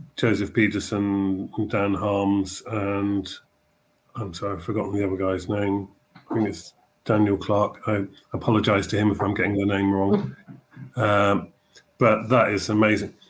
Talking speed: 150 wpm